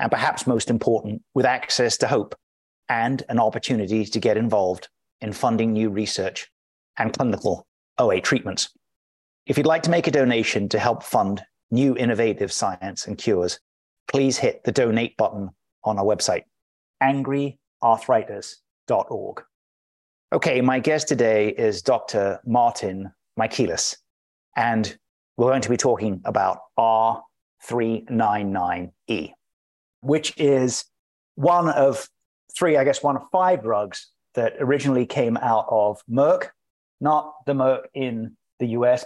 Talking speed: 130 wpm